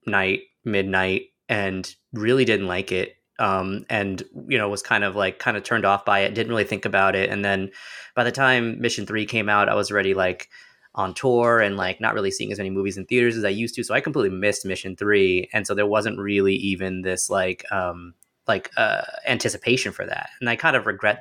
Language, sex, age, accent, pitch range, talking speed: English, male, 20-39, American, 95-115 Hz, 225 wpm